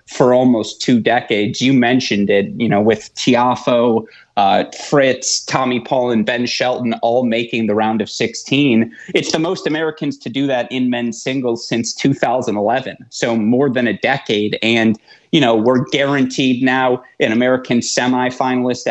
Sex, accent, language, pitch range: male, American, English, 115-145 Hz